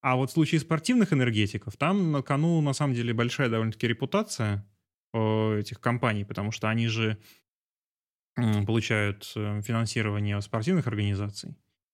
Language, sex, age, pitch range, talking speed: Russian, male, 20-39, 110-135 Hz, 125 wpm